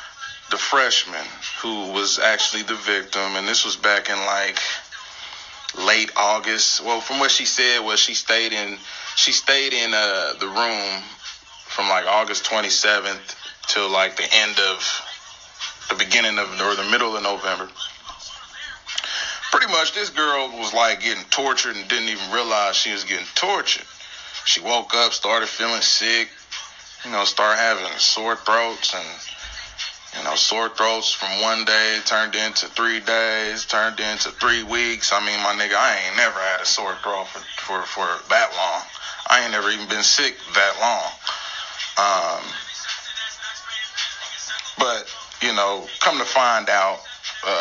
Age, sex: 20-39, male